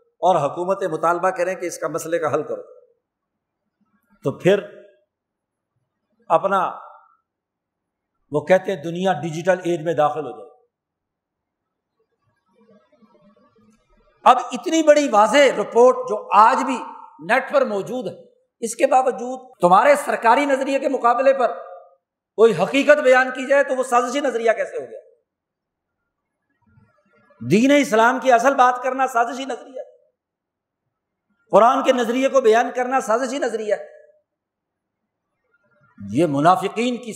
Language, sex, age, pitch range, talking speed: Urdu, male, 50-69, 200-285 Hz, 125 wpm